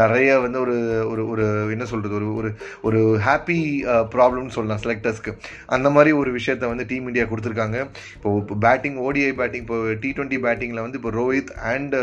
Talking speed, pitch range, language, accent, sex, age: 65 wpm, 115-130 Hz, Tamil, native, male, 20-39